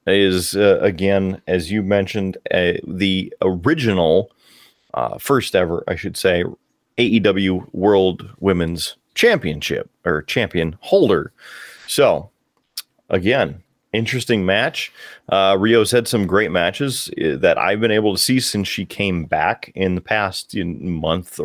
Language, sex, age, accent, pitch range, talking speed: English, male, 30-49, American, 95-120 Hz, 130 wpm